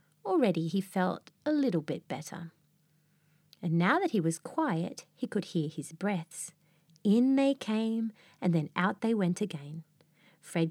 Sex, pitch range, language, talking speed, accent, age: female, 165-225 Hz, English, 155 wpm, Australian, 30-49